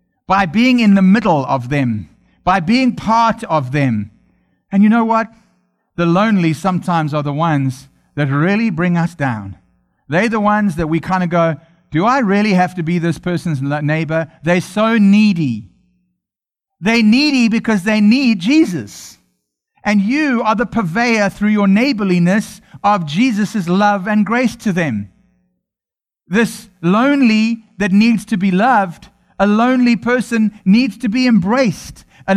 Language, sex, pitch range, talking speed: English, male, 175-235 Hz, 155 wpm